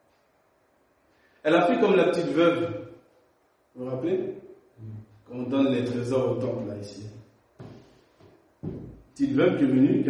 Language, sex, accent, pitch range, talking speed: French, male, French, 120-150 Hz, 150 wpm